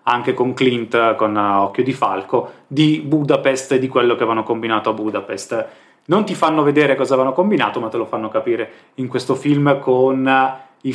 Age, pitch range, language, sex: 20-39, 115-140 Hz, Italian, male